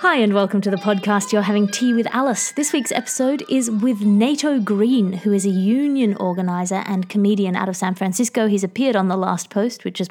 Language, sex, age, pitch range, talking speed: English, female, 30-49, 185-220 Hz, 220 wpm